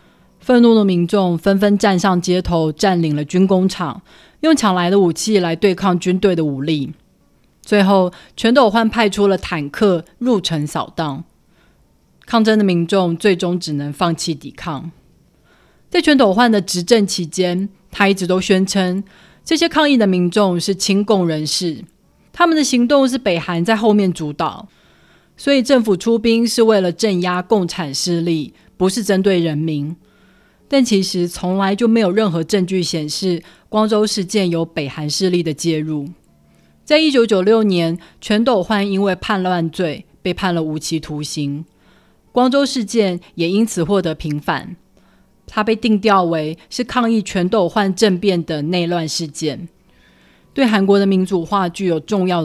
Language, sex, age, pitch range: Chinese, female, 30-49, 170-210 Hz